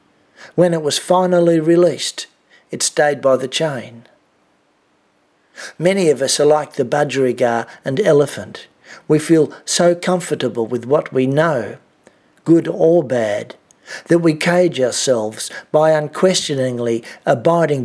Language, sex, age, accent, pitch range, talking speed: English, male, 60-79, Australian, 130-165 Hz, 125 wpm